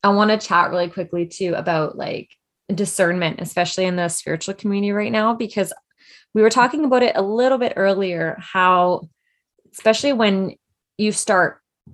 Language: English